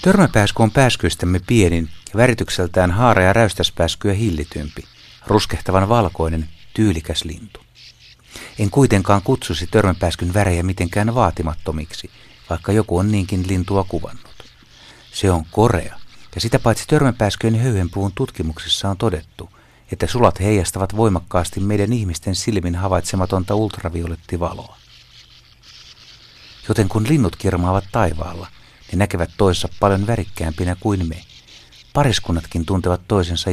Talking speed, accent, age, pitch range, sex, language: 110 wpm, native, 60-79, 85-105 Hz, male, Finnish